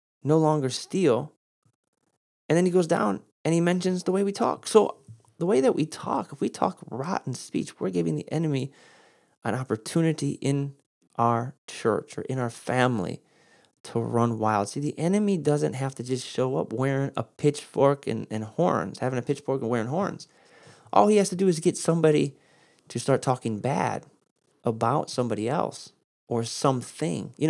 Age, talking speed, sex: 30-49, 175 wpm, male